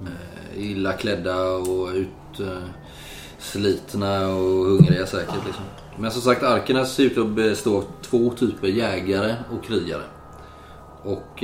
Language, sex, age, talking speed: Swedish, male, 30-49, 130 wpm